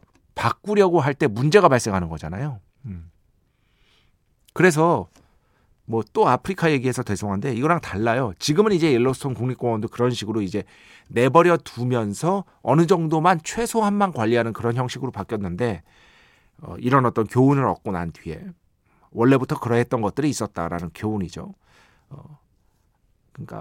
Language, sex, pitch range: Korean, male, 105-160 Hz